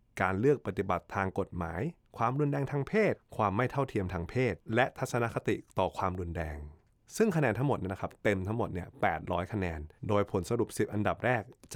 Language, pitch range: Thai, 95-120 Hz